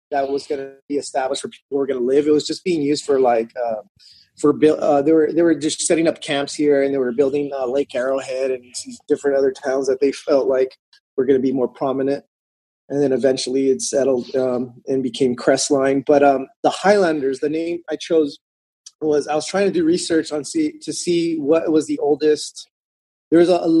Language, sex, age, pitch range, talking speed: English, male, 30-49, 135-155 Hz, 220 wpm